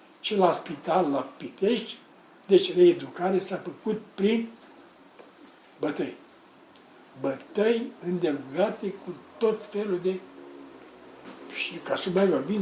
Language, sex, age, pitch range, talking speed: Romanian, male, 60-79, 175-230 Hz, 105 wpm